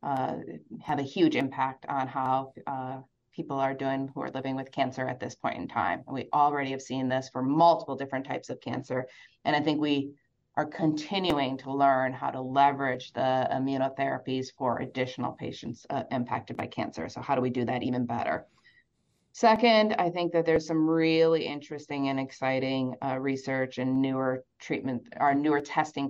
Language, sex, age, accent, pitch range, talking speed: English, female, 30-49, American, 130-155 Hz, 180 wpm